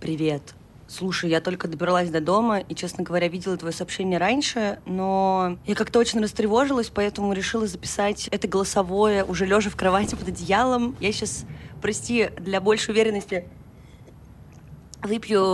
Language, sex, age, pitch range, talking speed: Russian, female, 20-39, 185-220 Hz, 145 wpm